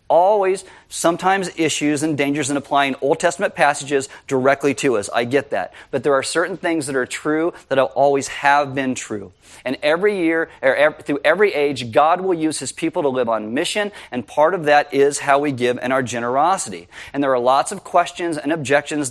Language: English